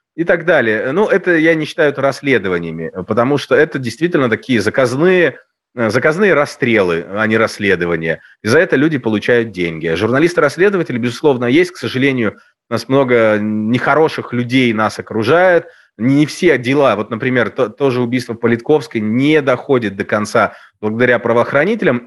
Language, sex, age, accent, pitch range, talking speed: Russian, male, 30-49, native, 115-150 Hz, 145 wpm